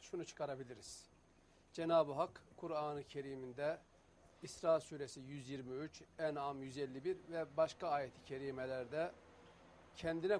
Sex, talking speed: male, 90 wpm